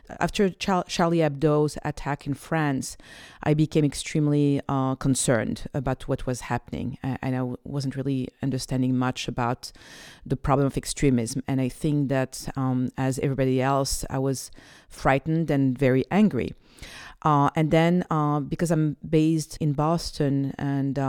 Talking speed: 140 wpm